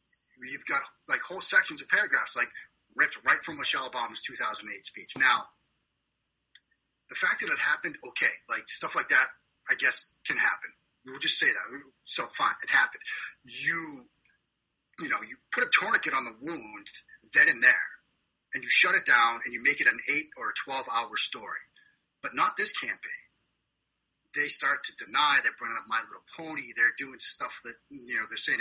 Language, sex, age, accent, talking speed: English, male, 30-49, American, 185 wpm